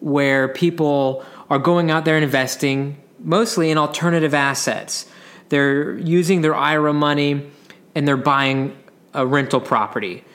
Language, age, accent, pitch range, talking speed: English, 20-39, American, 135-175 Hz, 135 wpm